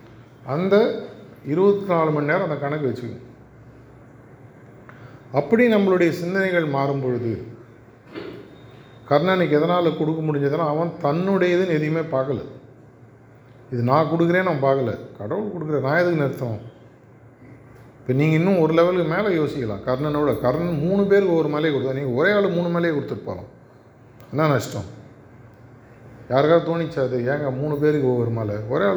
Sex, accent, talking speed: male, native, 125 wpm